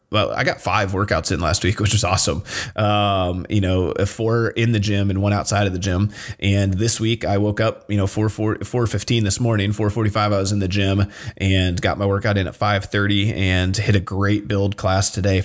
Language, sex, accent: English, male, American